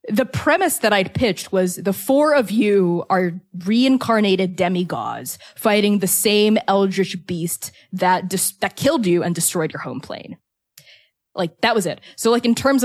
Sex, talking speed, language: female, 170 wpm, English